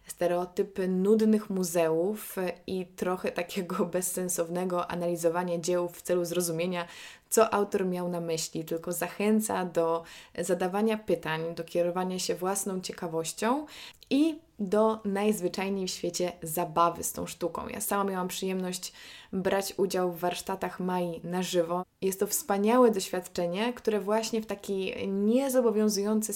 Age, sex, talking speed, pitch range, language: 20-39, female, 125 wpm, 175-205 Hz, Polish